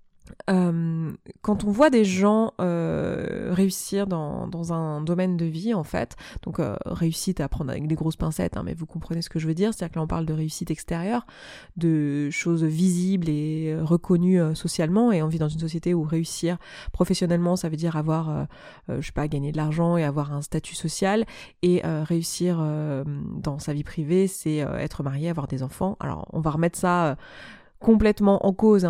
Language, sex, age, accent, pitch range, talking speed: French, female, 20-39, French, 160-190 Hz, 205 wpm